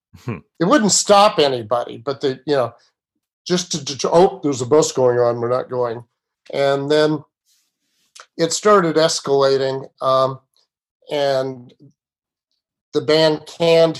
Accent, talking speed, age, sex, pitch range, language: American, 135 wpm, 50-69, male, 125-155 Hz, English